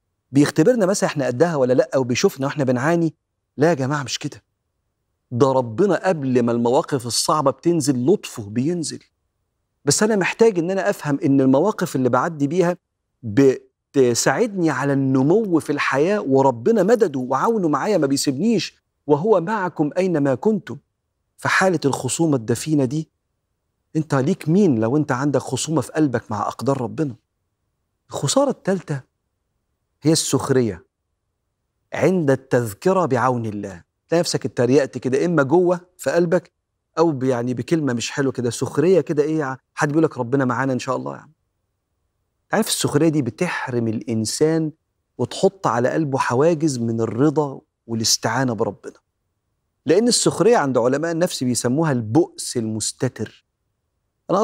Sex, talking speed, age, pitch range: male, 135 wpm, 40-59, 120-165 Hz